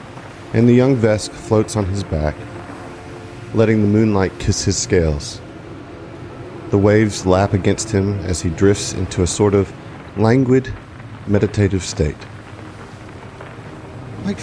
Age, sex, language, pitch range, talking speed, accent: 40-59, male, English, 90-115 Hz, 125 wpm, American